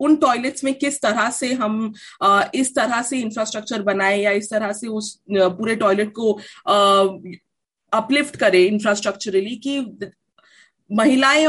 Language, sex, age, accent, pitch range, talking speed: Hindi, female, 30-49, native, 195-245 Hz, 135 wpm